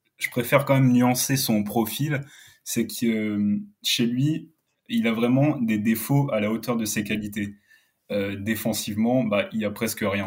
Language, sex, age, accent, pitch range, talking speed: French, male, 20-39, French, 105-130 Hz, 165 wpm